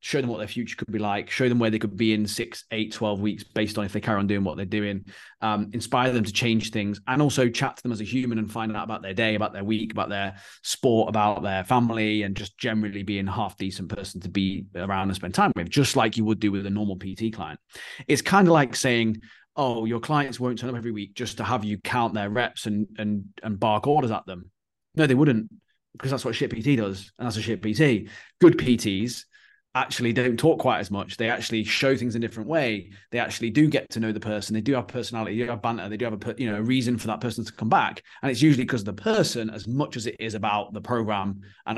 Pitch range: 100-125 Hz